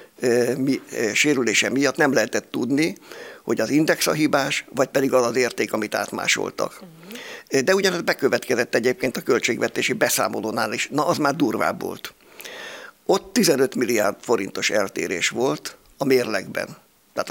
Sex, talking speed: male, 140 wpm